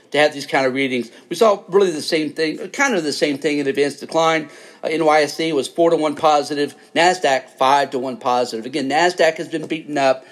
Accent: American